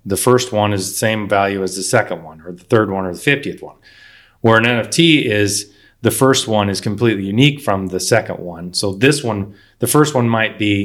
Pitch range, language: 100-115 Hz, English